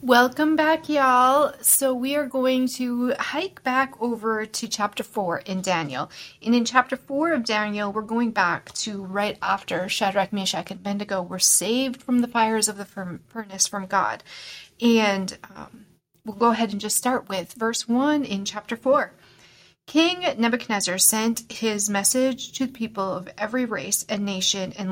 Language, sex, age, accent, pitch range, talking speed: English, female, 30-49, American, 195-245 Hz, 170 wpm